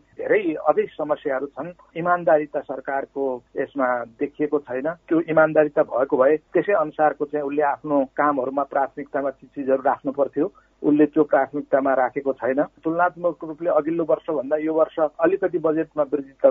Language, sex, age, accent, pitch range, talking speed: English, male, 60-79, Indian, 145-160 Hz, 140 wpm